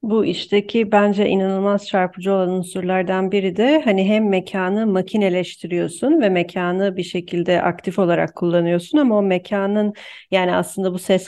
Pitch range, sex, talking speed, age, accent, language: 175-205 Hz, female, 145 wpm, 40-59, native, Turkish